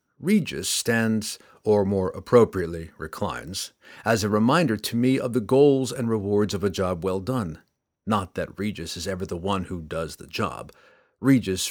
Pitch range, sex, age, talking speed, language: 100-140 Hz, male, 50-69, 170 wpm, English